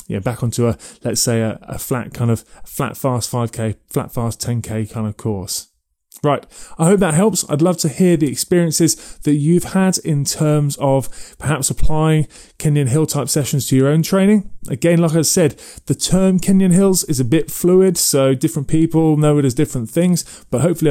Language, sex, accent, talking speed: English, male, British, 200 wpm